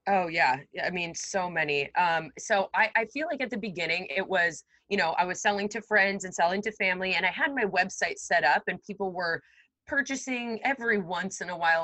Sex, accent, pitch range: female, American, 165-205 Hz